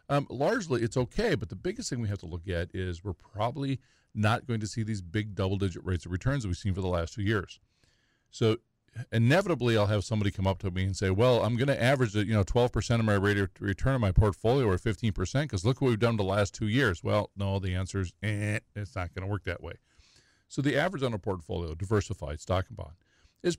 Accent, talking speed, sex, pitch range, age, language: American, 245 wpm, male, 95-120 Hz, 40-59, English